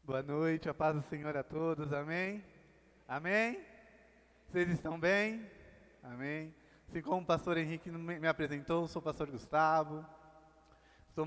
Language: Portuguese